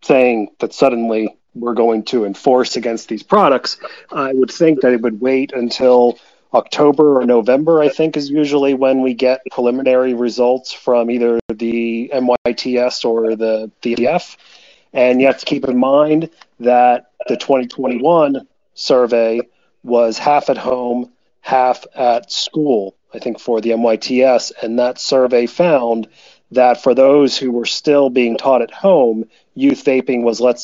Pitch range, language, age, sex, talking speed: 115-135 Hz, English, 30-49, male, 155 wpm